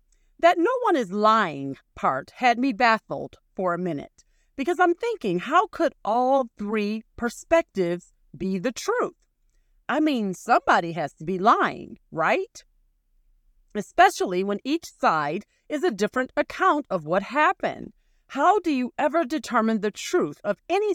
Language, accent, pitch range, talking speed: English, American, 185-295 Hz, 145 wpm